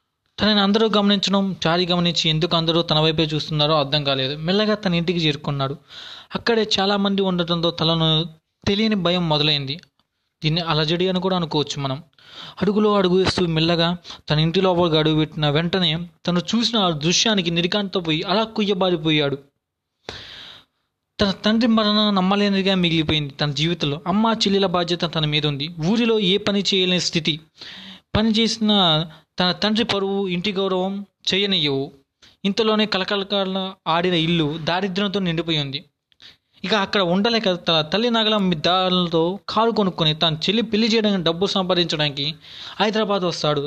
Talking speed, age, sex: 130 wpm, 20-39, male